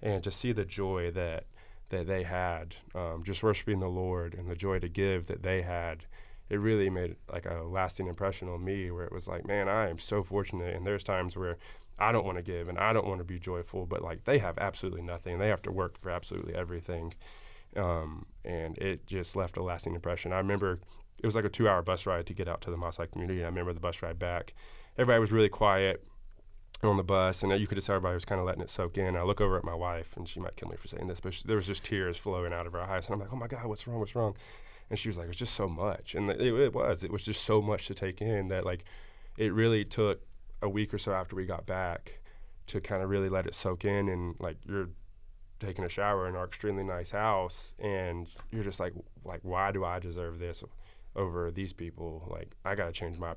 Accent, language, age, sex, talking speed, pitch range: American, English, 20-39, male, 250 wpm, 85-100 Hz